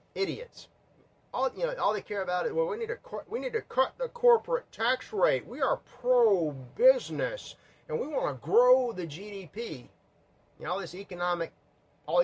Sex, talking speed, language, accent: male, 185 wpm, English, American